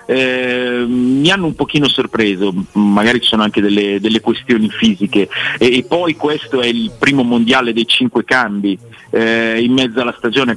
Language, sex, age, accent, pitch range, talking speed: Italian, male, 40-59, native, 110-135 Hz, 170 wpm